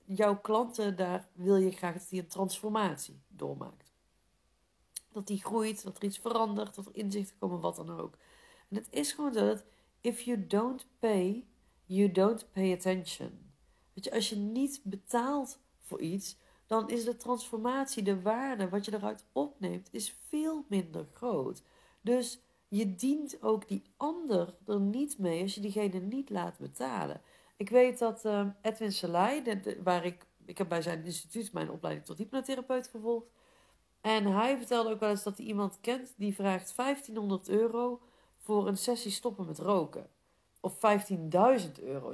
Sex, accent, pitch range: female, Dutch, 185-235 Hz